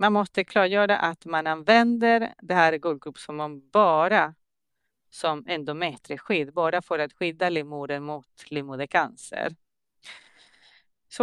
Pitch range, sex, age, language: 145-200 Hz, female, 30-49, Swedish